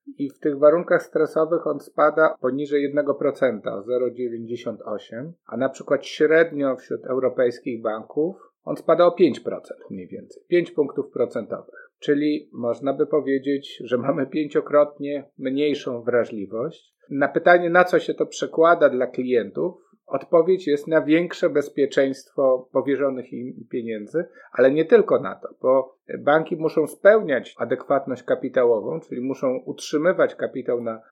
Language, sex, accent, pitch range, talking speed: Polish, male, native, 135-180 Hz, 130 wpm